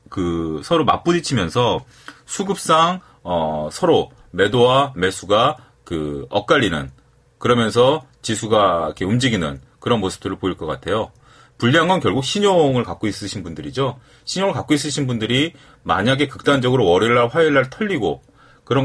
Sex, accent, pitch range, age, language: male, native, 95-135 Hz, 30-49, Korean